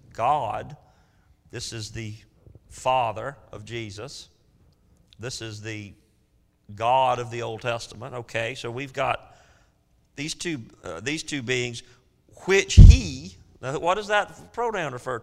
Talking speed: 130 wpm